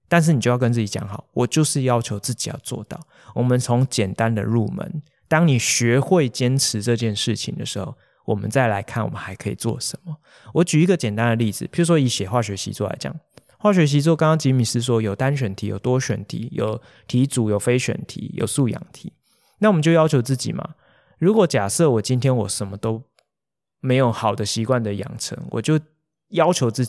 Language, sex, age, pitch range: Chinese, male, 20-39, 115-160 Hz